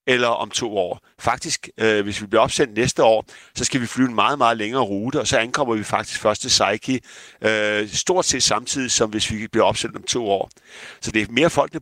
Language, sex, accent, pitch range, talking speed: Danish, male, native, 105-125 Hz, 235 wpm